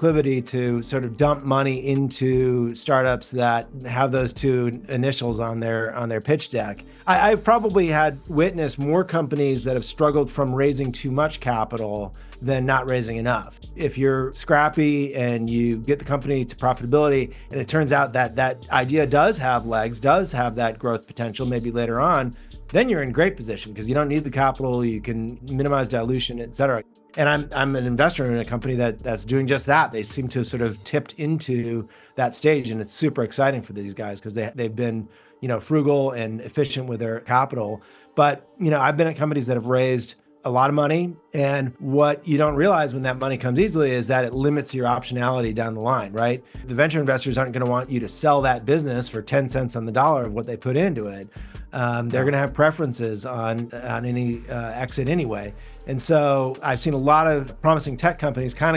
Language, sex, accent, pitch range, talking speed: English, male, American, 120-145 Hz, 210 wpm